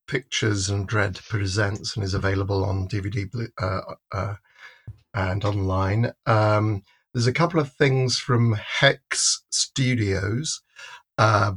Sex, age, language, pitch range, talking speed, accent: male, 50-69, English, 105-125 Hz, 120 wpm, British